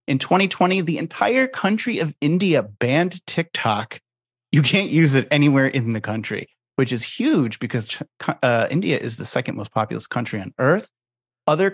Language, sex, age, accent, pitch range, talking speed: English, male, 30-49, American, 120-150 Hz, 165 wpm